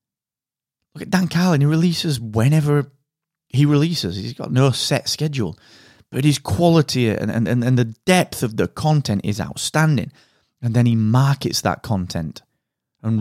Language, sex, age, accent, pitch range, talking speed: English, male, 30-49, British, 105-140 Hz, 155 wpm